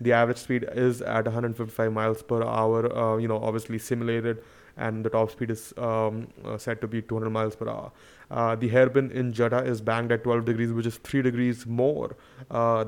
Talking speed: 205 wpm